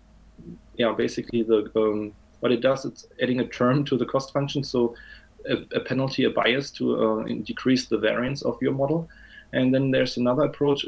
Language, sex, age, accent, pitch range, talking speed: English, male, 20-39, German, 120-140 Hz, 190 wpm